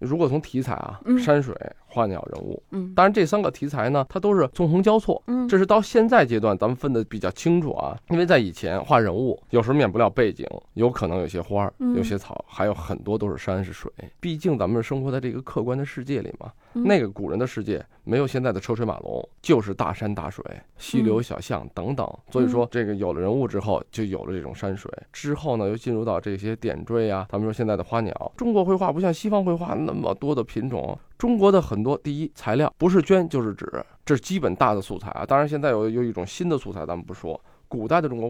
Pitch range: 110-170 Hz